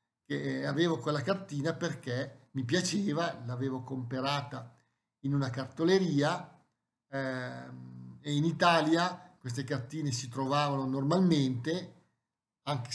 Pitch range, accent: 130-165 Hz, native